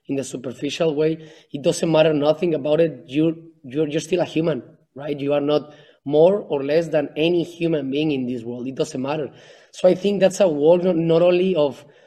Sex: male